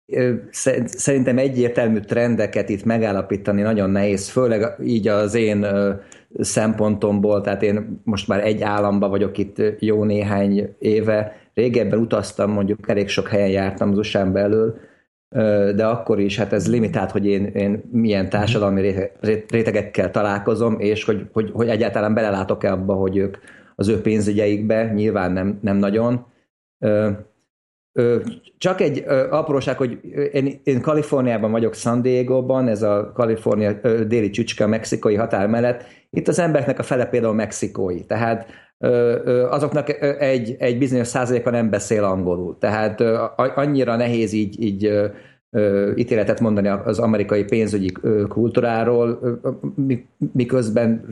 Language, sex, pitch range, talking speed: Hungarian, male, 105-120 Hz, 125 wpm